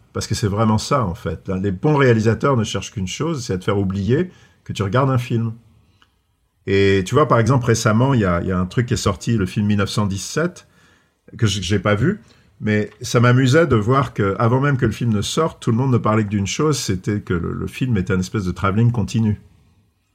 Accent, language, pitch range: French, French, 95-125 Hz